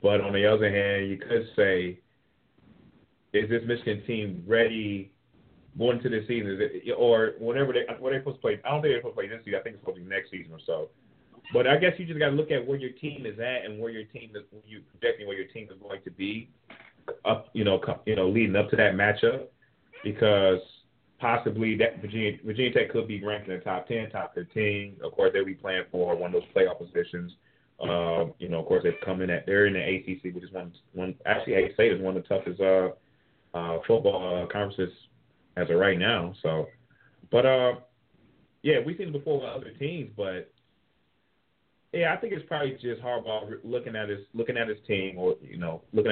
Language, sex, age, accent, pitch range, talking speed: English, male, 30-49, American, 95-130 Hz, 230 wpm